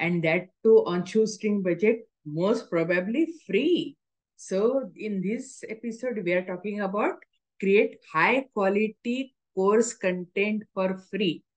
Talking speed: 125 wpm